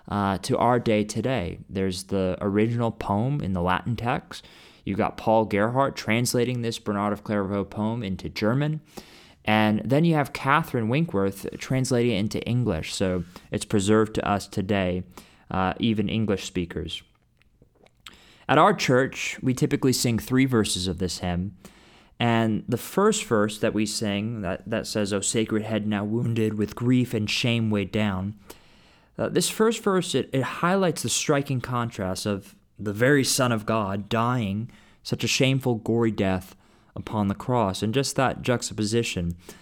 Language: English